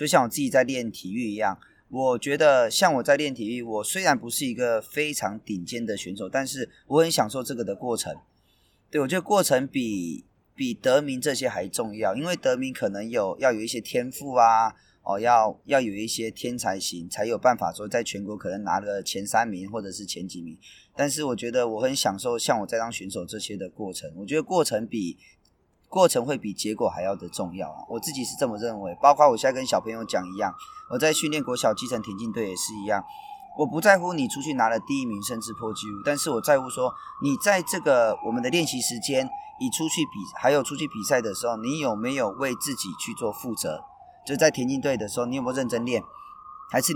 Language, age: Chinese, 20-39